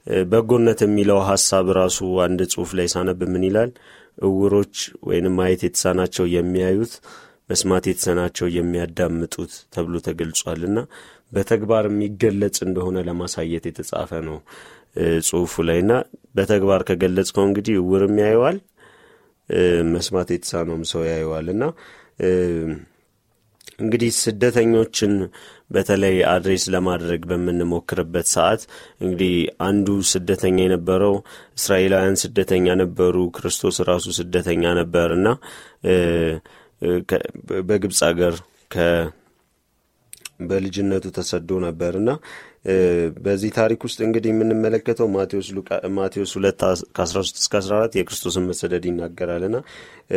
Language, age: Amharic, 30-49